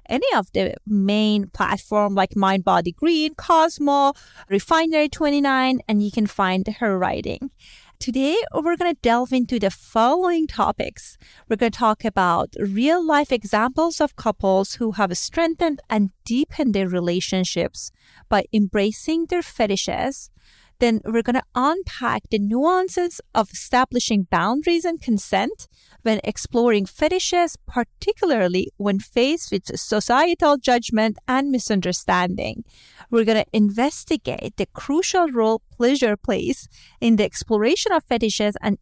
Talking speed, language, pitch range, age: 135 wpm, English, 210-295 Hz, 30-49